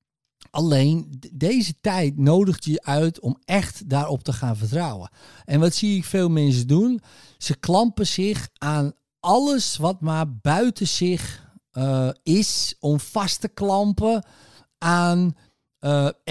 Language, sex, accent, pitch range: Dutch, male, Dutch, 130-165 Hz